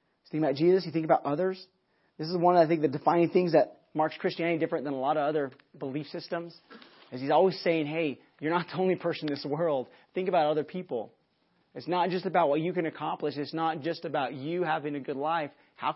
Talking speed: 230 wpm